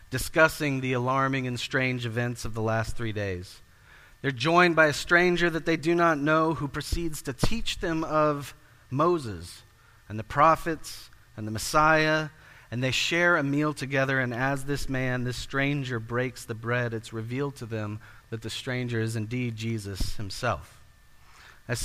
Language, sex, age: English, male, 40-59